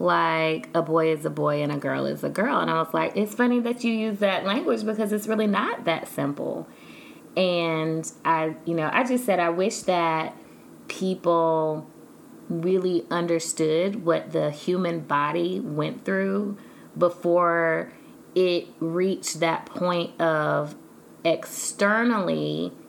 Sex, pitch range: female, 150-180 Hz